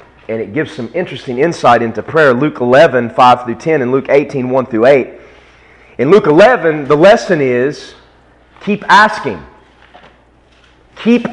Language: English